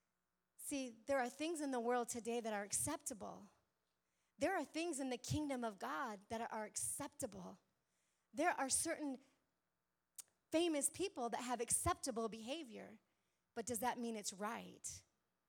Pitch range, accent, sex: 210-275 Hz, American, female